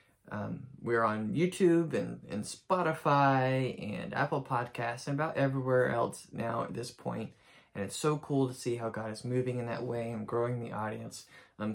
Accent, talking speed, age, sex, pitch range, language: American, 185 wpm, 20-39, male, 115-140 Hz, English